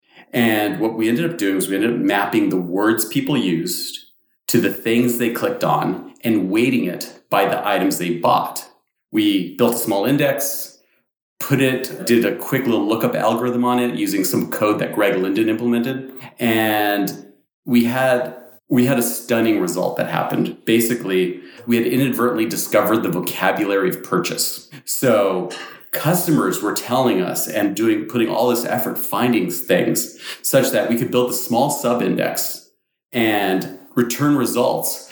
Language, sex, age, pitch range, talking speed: English, male, 40-59, 105-125 Hz, 160 wpm